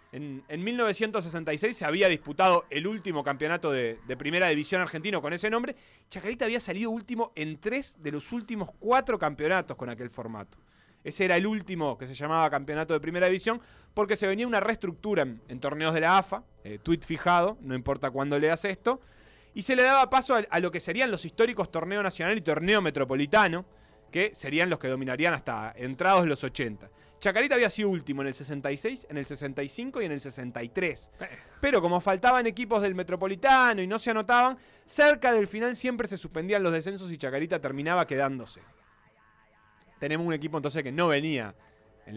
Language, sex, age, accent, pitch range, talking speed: Spanish, male, 30-49, Argentinian, 140-210 Hz, 190 wpm